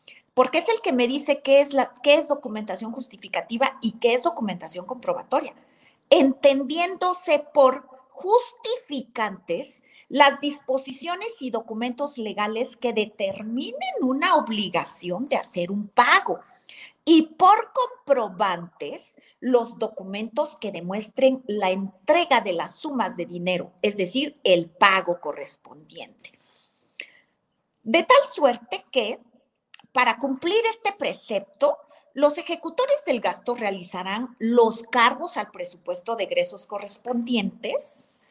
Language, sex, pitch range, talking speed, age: Spanish, female, 215-290 Hz, 110 wpm, 40-59